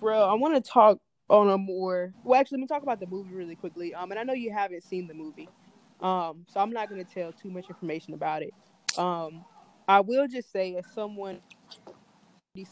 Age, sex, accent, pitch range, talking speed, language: 20-39, female, American, 175-210 Hz, 220 wpm, English